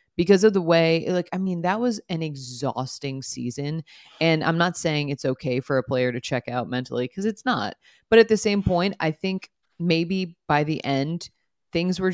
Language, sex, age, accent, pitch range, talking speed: English, female, 30-49, American, 135-180 Hz, 205 wpm